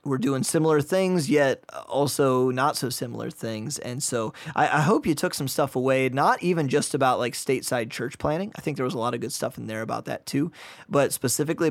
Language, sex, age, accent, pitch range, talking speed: English, male, 20-39, American, 125-150 Hz, 225 wpm